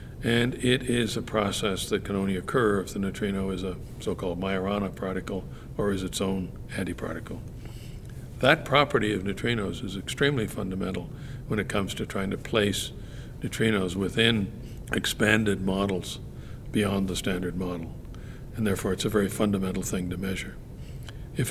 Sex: male